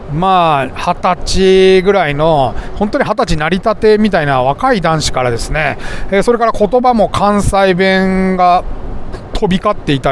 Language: Japanese